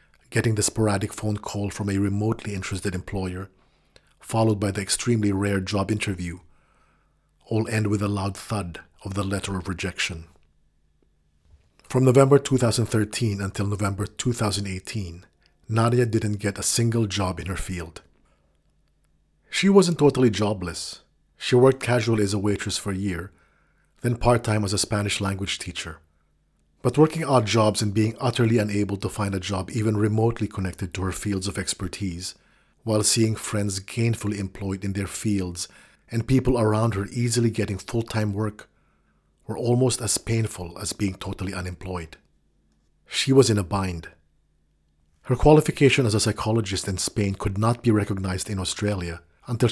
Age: 50-69